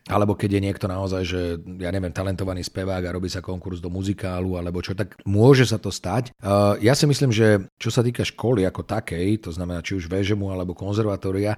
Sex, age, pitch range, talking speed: male, 40-59, 90-105 Hz, 215 wpm